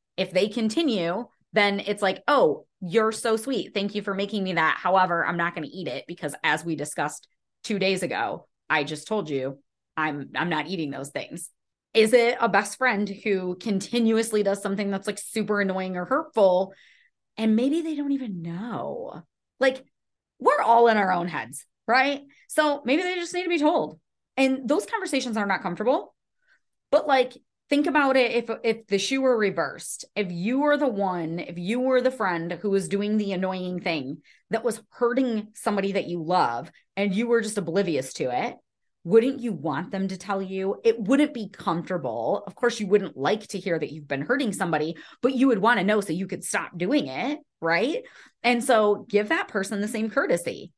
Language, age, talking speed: English, 30-49, 200 wpm